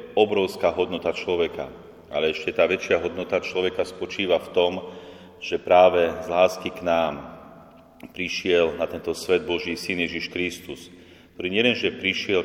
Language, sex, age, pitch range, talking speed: Slovak, male, 30-49, 85-95 Hz, 140 wpm